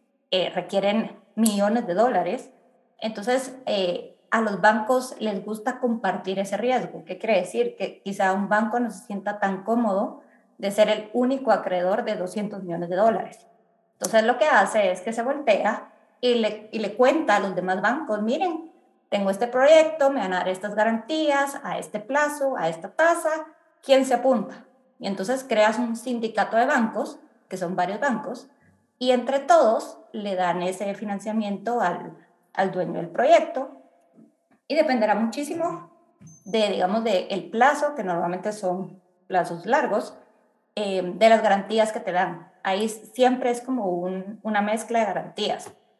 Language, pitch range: Spanish, 195-250 Hz